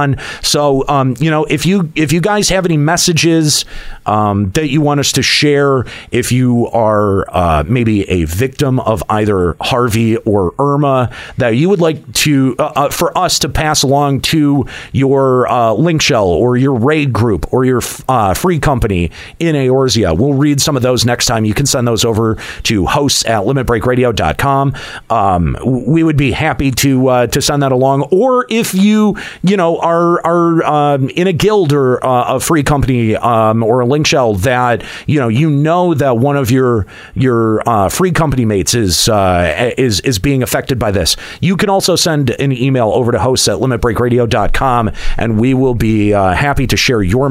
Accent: American